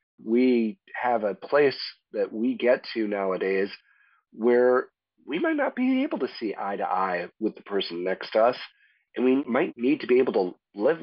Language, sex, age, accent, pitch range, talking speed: English, male, 40-59, American, 100-125 Hz, 190 wpm